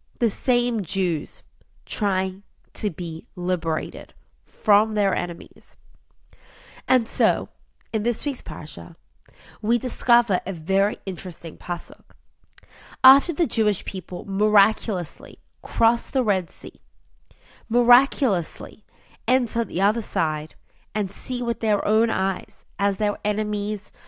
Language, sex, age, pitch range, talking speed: English, female, 20-39, 190-240 Hz, 110 wpm